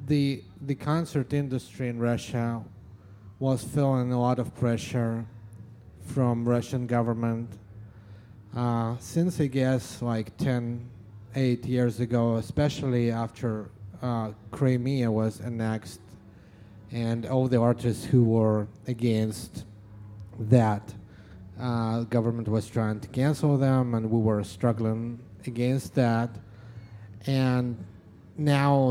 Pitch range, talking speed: 110-125 Hz, 110 wpm